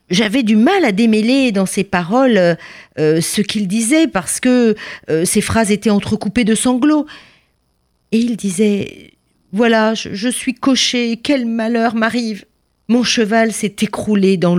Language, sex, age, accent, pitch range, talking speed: French, female, 50-69, French, 165-245 Hz, 150 wpm